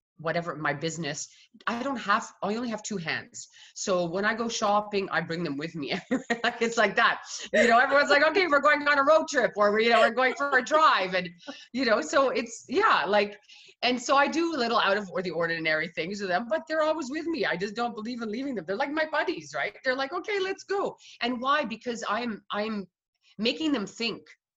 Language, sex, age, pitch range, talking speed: English, female, 30-49, 180-270 Hz, 230 wpm